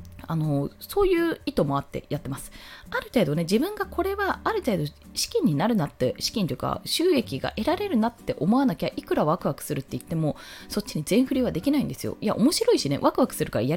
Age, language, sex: 20-39, Japanese, female